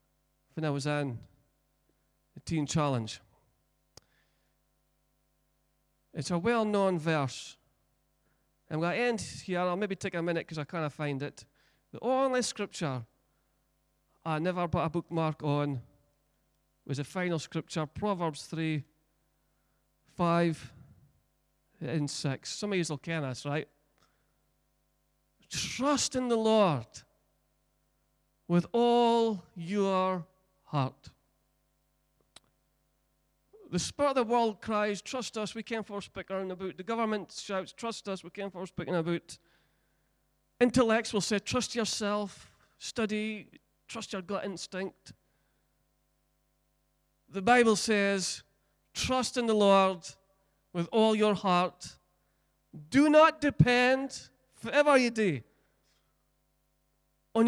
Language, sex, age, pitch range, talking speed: English, male, 40-59, 140-215 Hz, 115 wpm